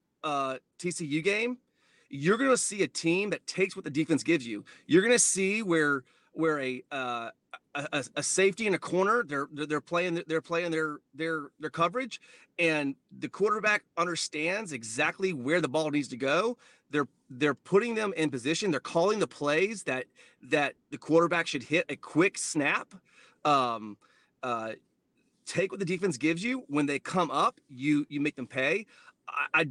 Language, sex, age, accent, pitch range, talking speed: English, male, 30-49, American, 145-195 Hz, 175 wpm